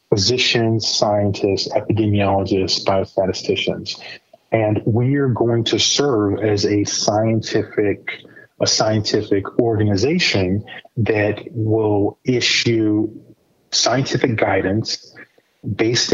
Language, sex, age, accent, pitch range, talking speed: English, male, 30-49, American, 100-115 Hz, 80 wpm